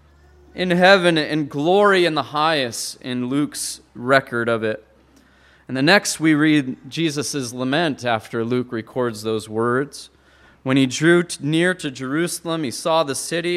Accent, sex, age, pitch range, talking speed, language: American, male, 30-49, 130-200 Hz, 150 wpm, English